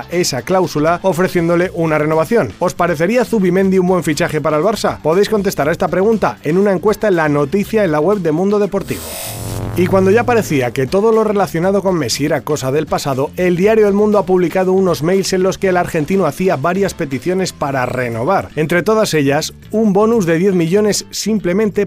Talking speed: 200 wpm